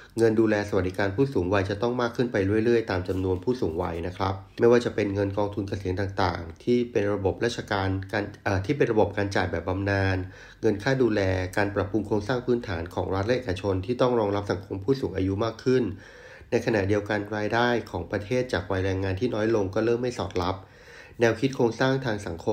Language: Thai